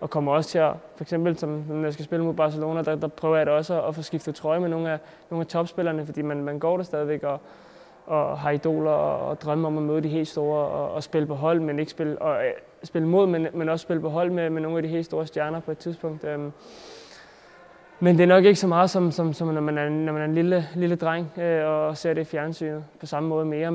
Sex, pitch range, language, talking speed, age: male, 145-165 Hz, Danish, 275 wpm, 20-39